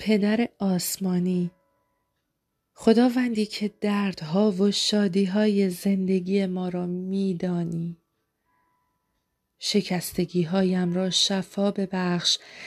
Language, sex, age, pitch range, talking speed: Persian, female, 40-59, 180-215 Hz, 70 wpm